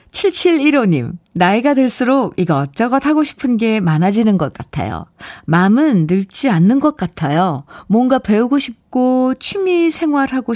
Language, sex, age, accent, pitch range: Korean, female, 50-69, native, 170-260 Hz